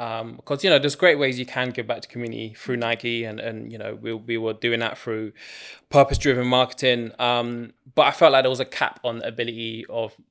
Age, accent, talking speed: 20-39, British, 235 wpm